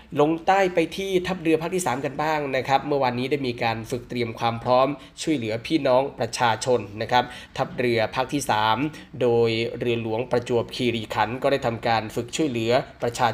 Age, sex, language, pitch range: 20-39, male, Thai, 115-140 Hz